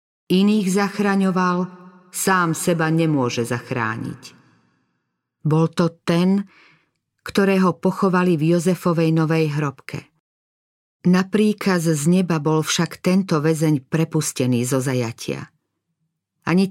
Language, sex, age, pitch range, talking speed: Slovak, female, 40-59, 150-180 Hz, 95 wpm